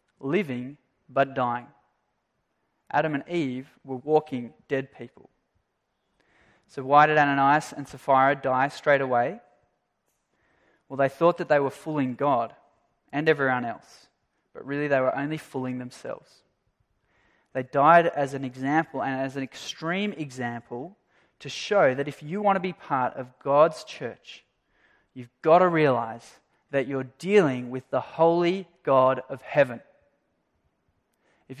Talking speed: 140 wpm